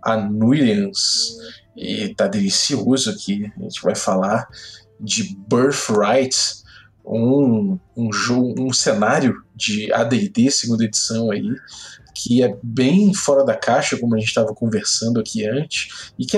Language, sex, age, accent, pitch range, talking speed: Portuguese, male, 20-39, Brazilian, 115-185 Hz, 130 wpm